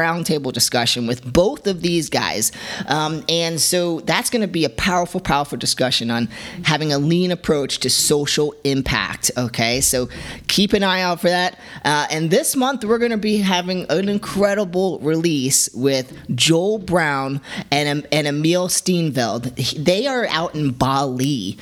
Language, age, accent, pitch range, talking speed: English, 30-49, American, 120-165 Hz, 160 wpm